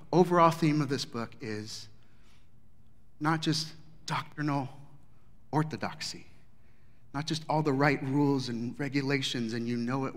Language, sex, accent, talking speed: English, male, American, 130 wpm